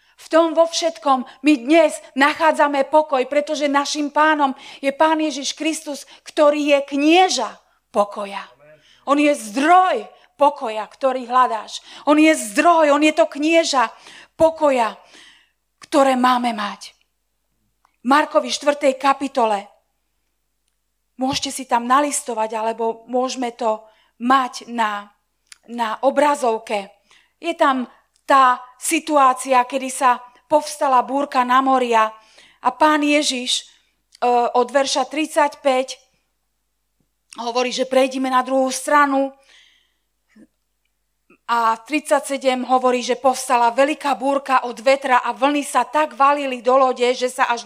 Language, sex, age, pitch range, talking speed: Slovak, female, 40-59, 245-295 Hz, 115 wpm